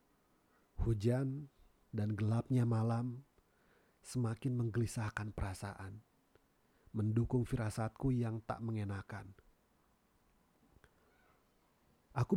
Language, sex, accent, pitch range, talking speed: Indonesian, male, native, 110-130 Hz, 65 wpm